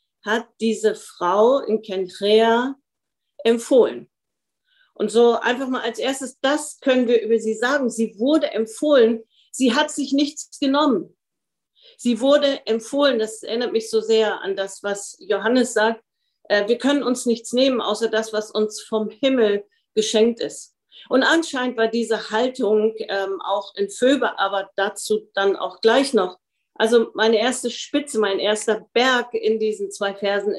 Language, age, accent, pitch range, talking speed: German, 50-69, German, 215-260 Hz, 150 wpm